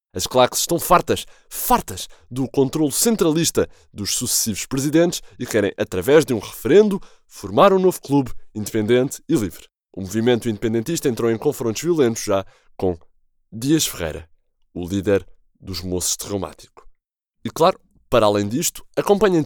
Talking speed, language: 140 wpm, Portuguese